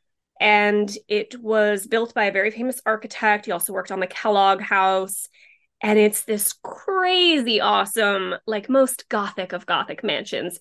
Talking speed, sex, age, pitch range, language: 155 wpm, female, 20-39, 200-250 Hz, English